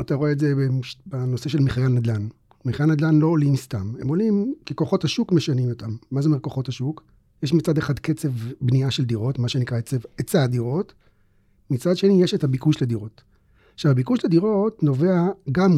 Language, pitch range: Hebrew, 120-155 Hz